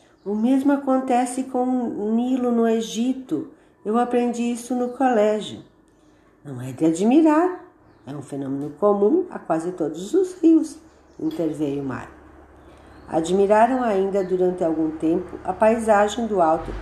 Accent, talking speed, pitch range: Brazilian, 135 wpm, 175-245 Hz